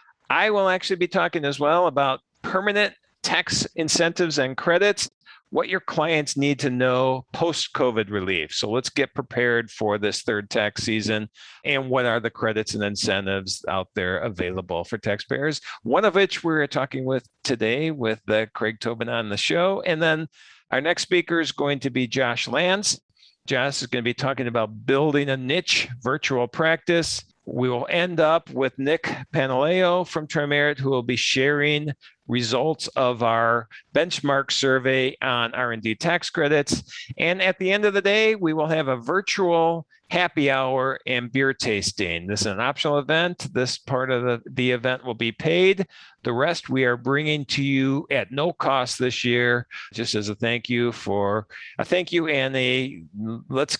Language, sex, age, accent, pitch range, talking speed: English, male, 50-69, American, 120-160 Hz, 175 wpm